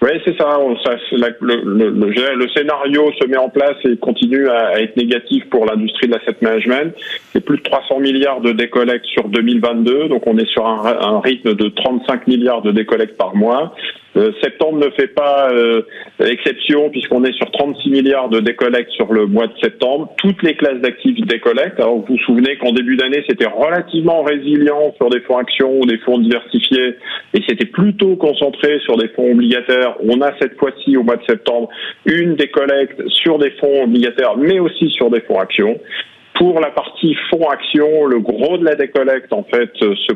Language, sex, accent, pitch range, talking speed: French, male, French, 120-150 Hz, 185 wpm